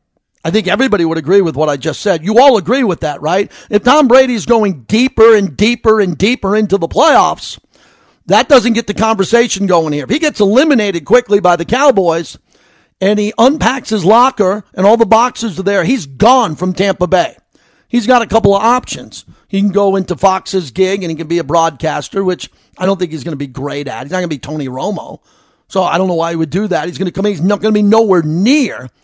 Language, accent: English, American